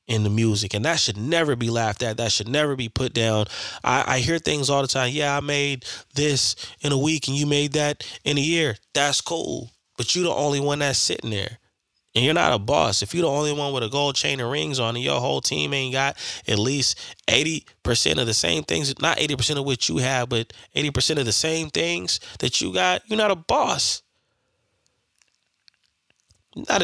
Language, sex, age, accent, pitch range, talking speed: English, male, 20-39, American, 110-145 Hz, 220 wpm